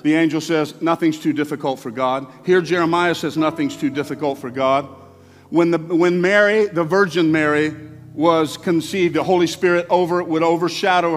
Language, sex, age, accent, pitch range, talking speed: English, male, 50-69, American, 150-180 Hz, 155 wpm